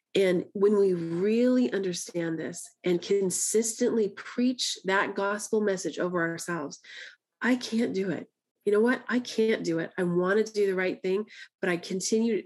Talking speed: 170 wpm